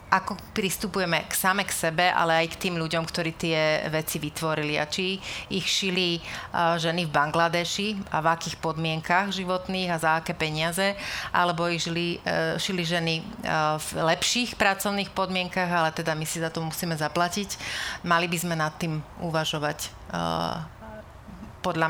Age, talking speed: 30-49, 160 wpm